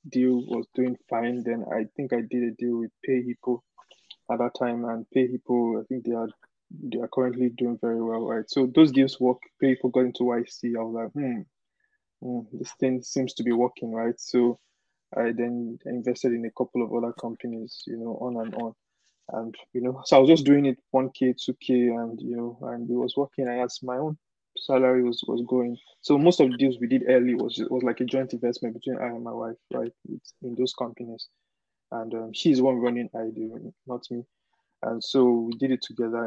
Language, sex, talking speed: English, male, 215 wpm